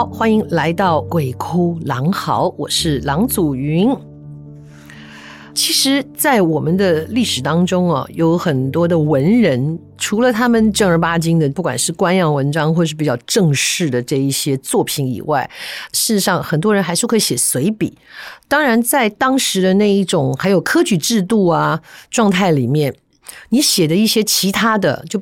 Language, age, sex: Chinese, 50-69, female